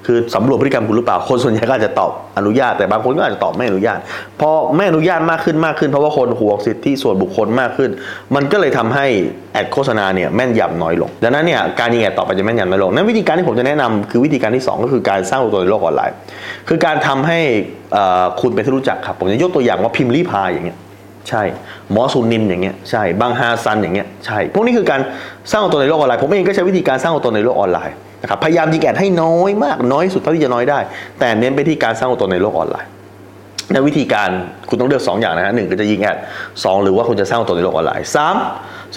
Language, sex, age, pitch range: Thai, male, 20-39, 105-155 Hz